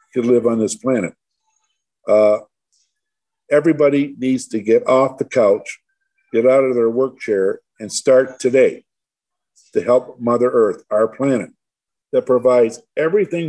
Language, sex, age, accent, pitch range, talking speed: English, male, 50-69, American, 120-180 Hz, 140 wpm